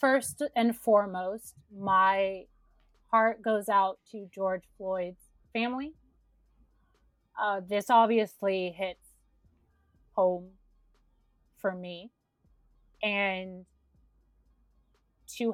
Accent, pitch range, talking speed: American, 180-220 Hz, 75 wpm